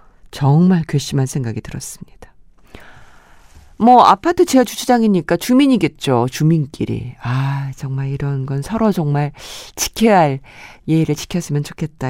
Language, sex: Korean, female